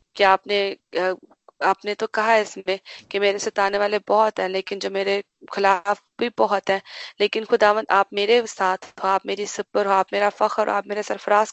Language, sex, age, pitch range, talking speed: Hindi, female, 20-39, 195-220 Hz, 180 wpm